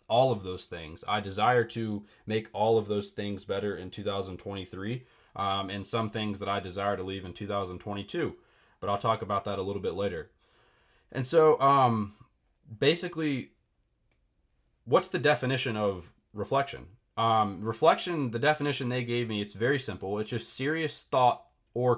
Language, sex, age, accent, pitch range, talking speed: English, male, 20-39, American, 100-135 Hz, 160 wpm